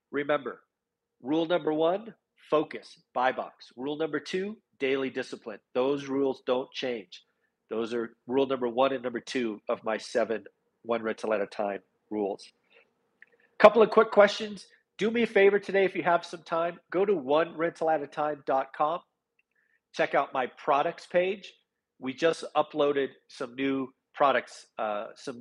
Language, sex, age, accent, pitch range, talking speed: English, male, 40-59, American, 125-155 Hz, 160 wpm